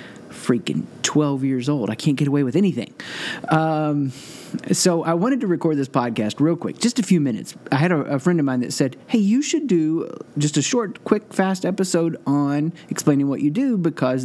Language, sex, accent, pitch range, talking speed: English, male, American, 120-155 Hz, 205 wpm